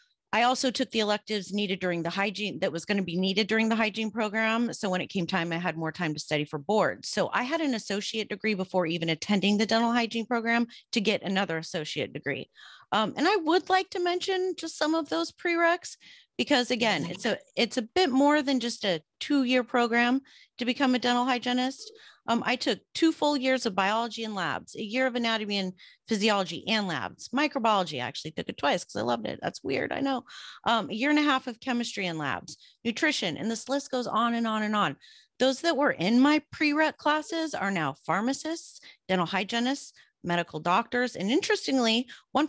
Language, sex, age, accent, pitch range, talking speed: English, female, 30-49, American, 200-275 Hz, 210 wpm